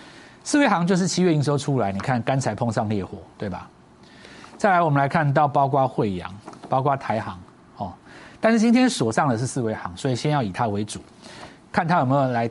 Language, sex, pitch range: Chinese, male, 105-170 Hz